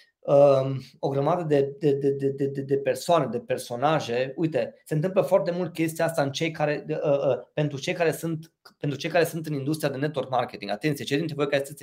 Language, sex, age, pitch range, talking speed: Romanian, male, 20-39, 145-205 Hz, 215 wpm